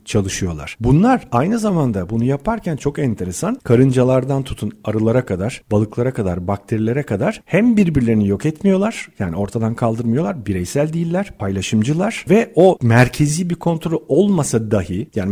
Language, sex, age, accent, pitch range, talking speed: Turkish, male, 40-59, native, 110-165 Hz, 135 wpm